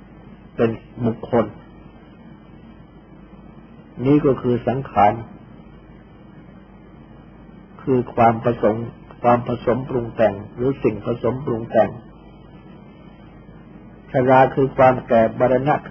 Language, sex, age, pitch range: Thai, male, 50-69, 115-135 Hz